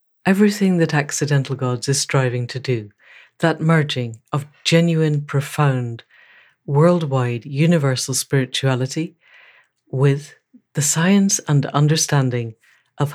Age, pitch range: 60-79, 130-155 Hz